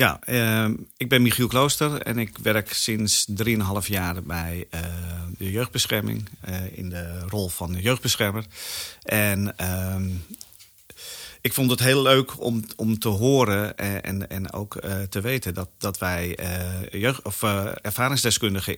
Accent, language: Dutch, Dutch